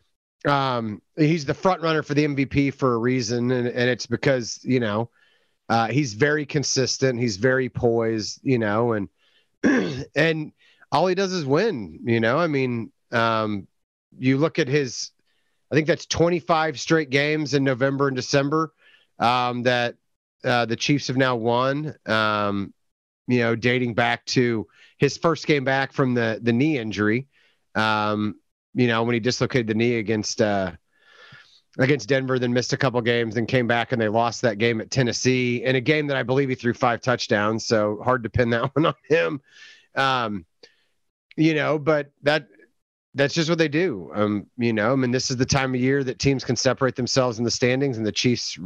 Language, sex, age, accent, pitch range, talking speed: English, male, 30-49, American, 115-140 Hz, 185 wpm